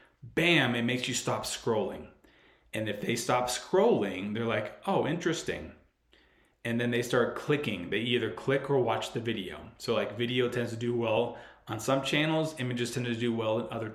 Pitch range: 115-130 Hz